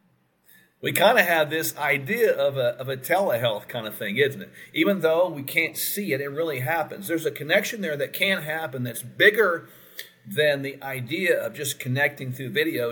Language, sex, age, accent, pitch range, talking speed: English, male, 50-69, American, 130-180 Hz, 195 wpm